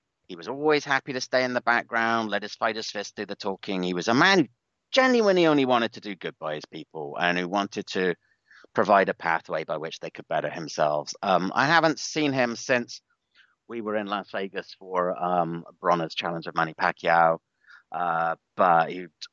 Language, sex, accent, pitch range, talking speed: English, male, British, 85-130 Hz, 200 wpm